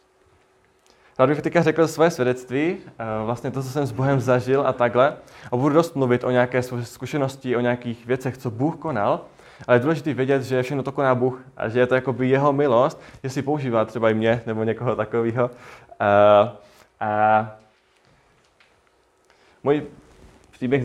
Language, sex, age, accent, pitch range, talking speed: Czech, male, 20-39, native, 115-135 Hz, 165 wpm